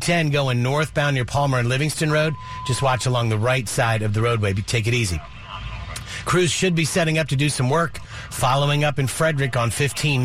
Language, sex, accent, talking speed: English, male, American, 205 wpm